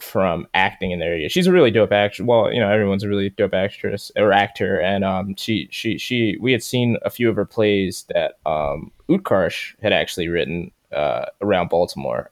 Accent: American